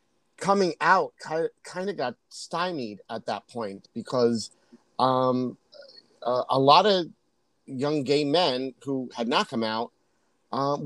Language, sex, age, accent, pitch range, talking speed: English, male, 30-49, American, 115-145 Hz, 135 wpm